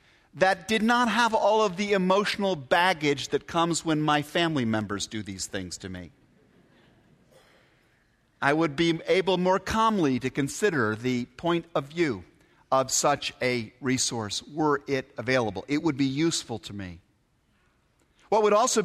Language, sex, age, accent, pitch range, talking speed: English, male, 50-69, American, 130-195 Hz, 155 wpm